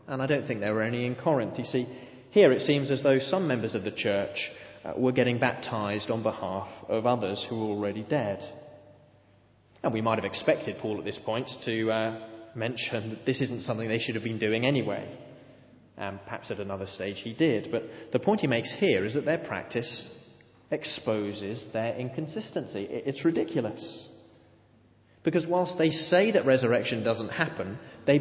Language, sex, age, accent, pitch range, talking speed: English, male, 30-49, British, 105-130 Hz, 180 wpm